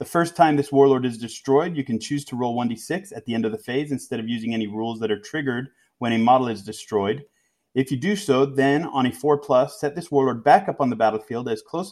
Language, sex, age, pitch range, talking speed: English, male, 30-49, 125-155 Hz, 255 wpm